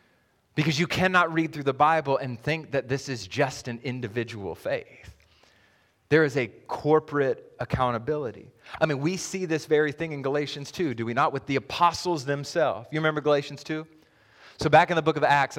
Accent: American